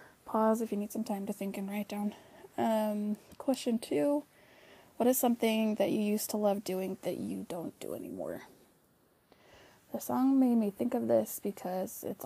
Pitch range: 190-225 Hz